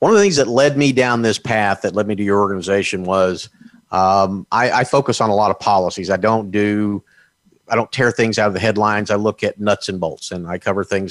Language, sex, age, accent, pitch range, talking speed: English, male, 50-69, American, 95-110 Hz, 255 wpm